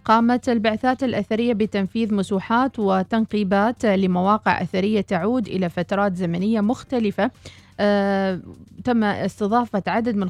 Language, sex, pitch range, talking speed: Arabic, female, 185-230 Hz, 100 wpm